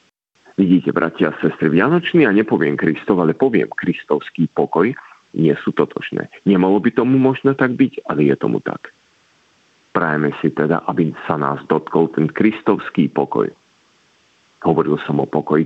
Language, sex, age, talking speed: Slovak, male, 50-69, 150 wpm